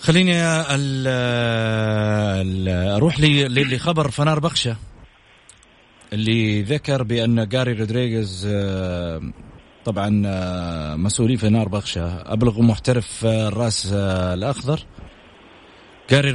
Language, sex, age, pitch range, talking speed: Arabic, male, 30-49, 105-130 Hz, 90 wpm